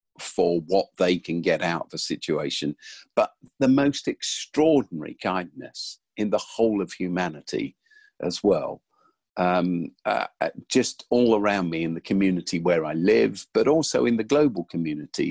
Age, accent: 50-69, British